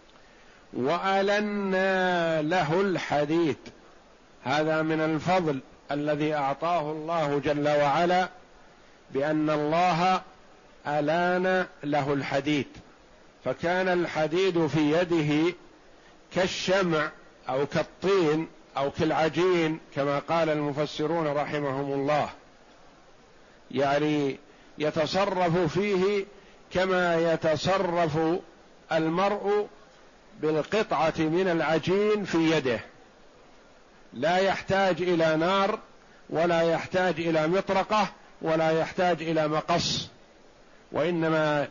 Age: 50-69